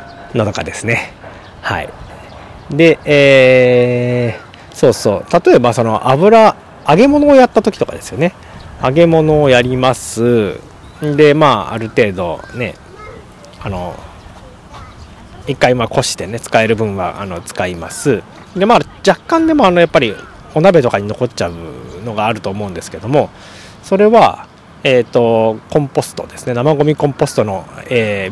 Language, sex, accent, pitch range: Japanese, male, native, 105-155 Hz